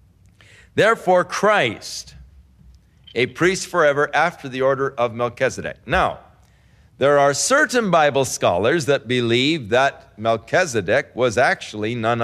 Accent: American